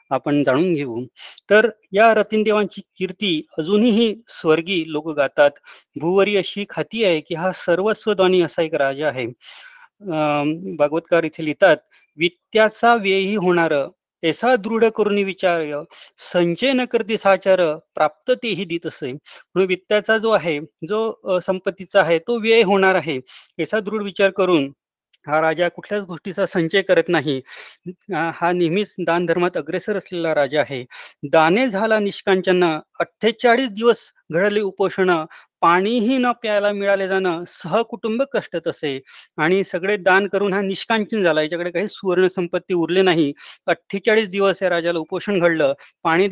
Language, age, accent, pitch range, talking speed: Marathi, 30-49, native, 165-210 Hz, 105 wpm